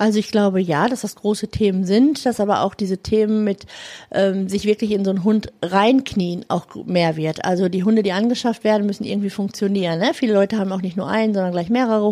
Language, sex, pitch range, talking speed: German, female, 190-225 Hz, 225 wpm